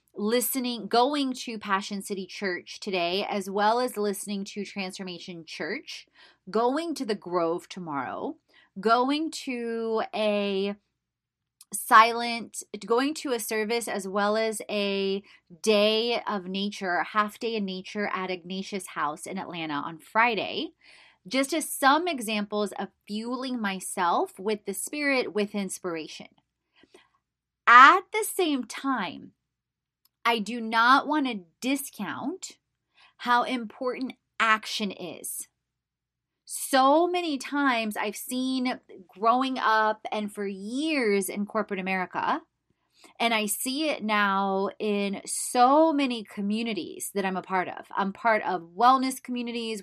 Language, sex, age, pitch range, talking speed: English, female, 30-49, 200-255 Hz, 125 wpm